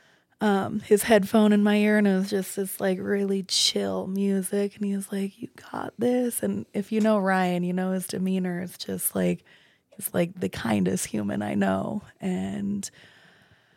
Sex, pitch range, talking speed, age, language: female, 180-210 Hz, 185 wpm, 20-39, English